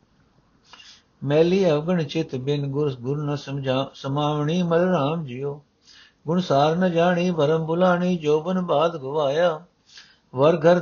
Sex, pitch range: male, 150-175 Hz